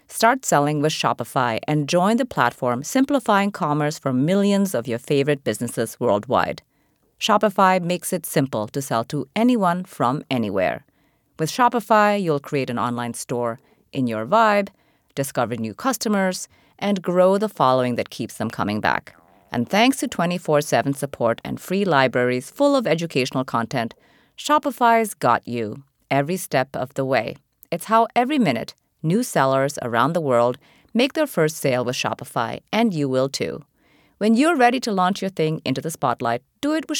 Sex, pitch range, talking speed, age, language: female, 130-210 Hz, 165 wpm, 30-49, English